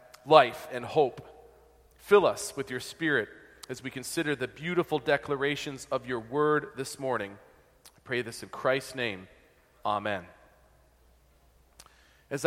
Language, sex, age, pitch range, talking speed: English, male, 40-59, 130-165 Hz, 135 wpm